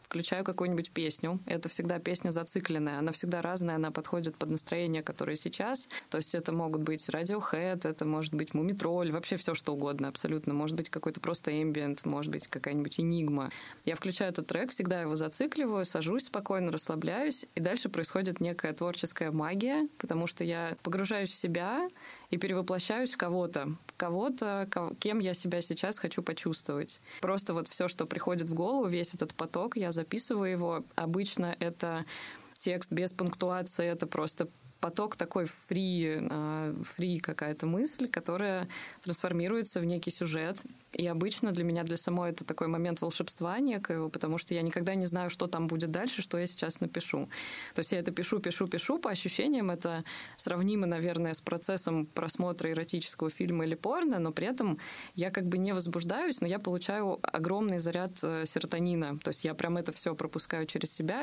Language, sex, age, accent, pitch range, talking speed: Russian, female, 20-39, native, 165-190 Hz, 170 wpm